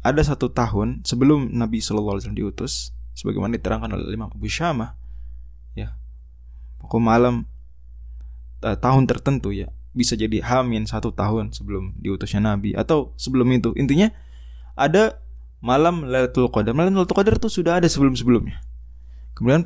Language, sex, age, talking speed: Indonesian, male, 20-39, 135 wpm